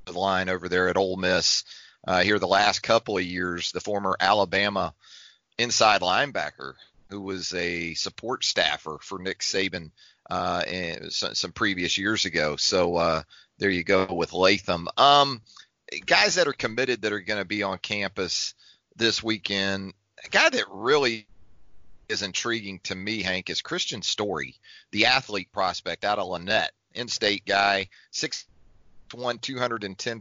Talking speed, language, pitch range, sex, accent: 155 wpm, English, 95-115 Hz, male, American